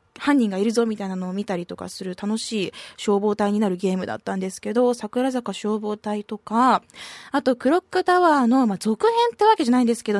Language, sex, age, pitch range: Japanese, female, 20-39, 205-280 Hz